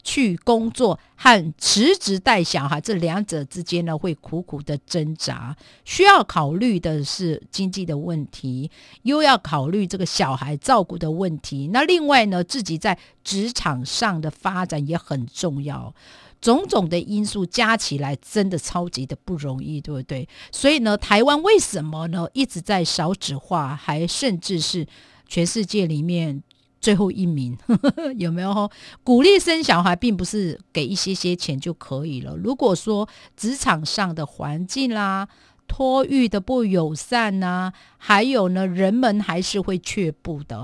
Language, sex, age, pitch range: Chinese, female, 50-69, 155-215 Hz